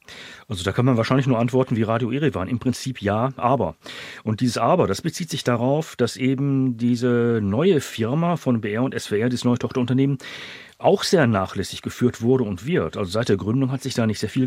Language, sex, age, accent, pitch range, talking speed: German, male, 40-59, German, 110-140 Hz, 205 wpm